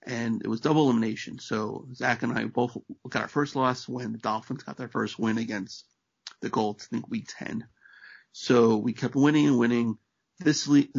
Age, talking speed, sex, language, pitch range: 40-59, 195 wpm, male, English, 110-135 Hz